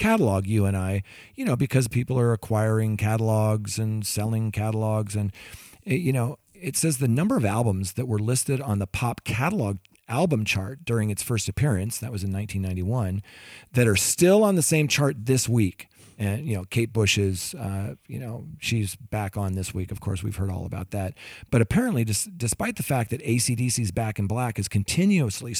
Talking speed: 190 wpm